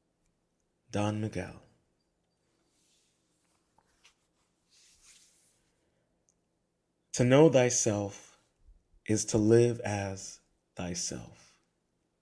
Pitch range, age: 100-125 Hz, 30-49